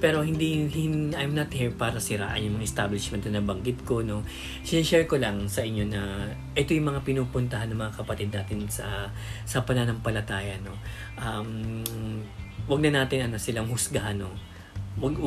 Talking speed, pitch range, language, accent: 165 wpm, 105-135 Hz, Filipino, native